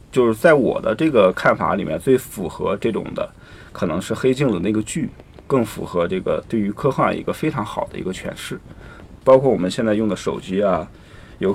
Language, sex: Chinese, male